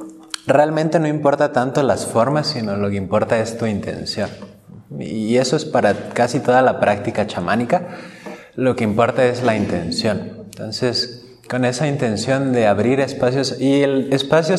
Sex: male